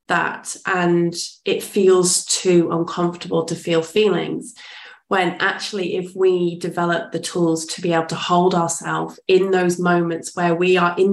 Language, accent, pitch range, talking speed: English, British, 175-200 Hz, 155 wpm